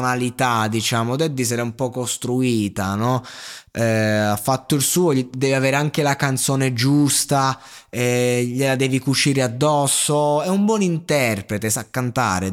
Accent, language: native, Italian